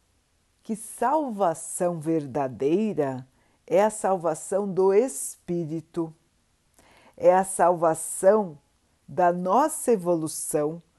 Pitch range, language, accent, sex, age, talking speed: 145-200 Hz, Portuguese, Brazilian, female, 60-79, 75 wpm